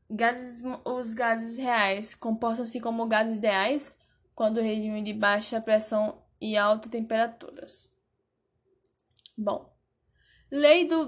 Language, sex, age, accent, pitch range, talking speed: Portuguese, female, 10-29, Brazilian, 215-255 Hz, 105 wpm